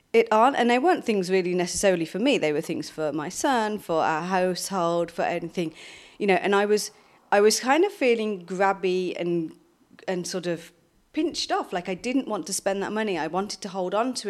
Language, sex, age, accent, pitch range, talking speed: English, female, 30-49, British, 185-235 Hz, 220 wpm